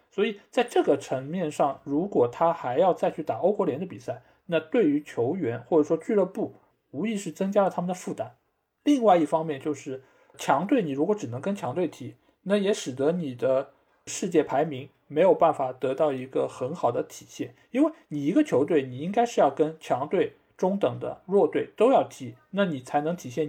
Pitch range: 135-200 Hz